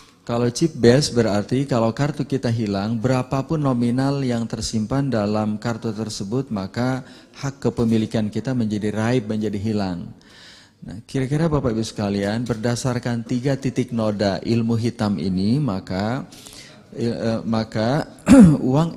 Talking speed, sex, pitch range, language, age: 120 wpm, male, 110-130 Hz, Indonesian, 30-49